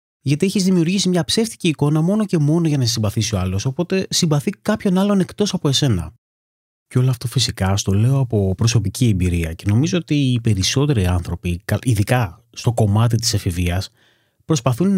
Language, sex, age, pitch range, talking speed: Greek, male, 30-49, 100-145 Hz, 170 wpm